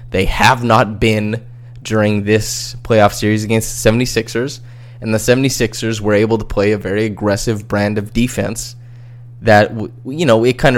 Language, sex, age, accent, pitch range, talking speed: English, male, 20-39, American, 105-120 Hz, 160 wpm